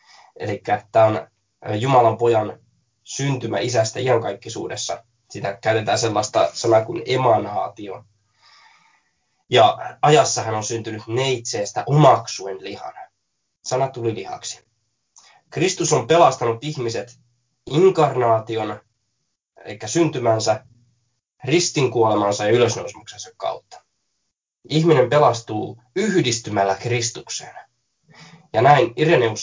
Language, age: Finnish, 20-39